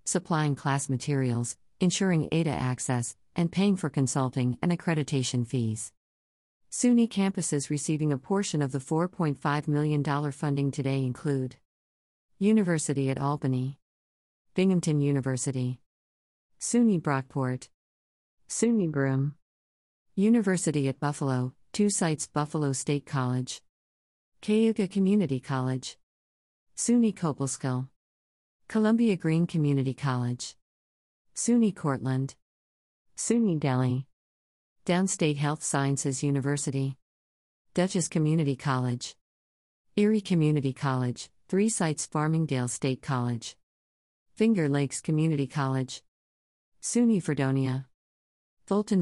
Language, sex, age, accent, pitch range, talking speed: English, female, 50-69, American, 120-160 Hz, 95 wpm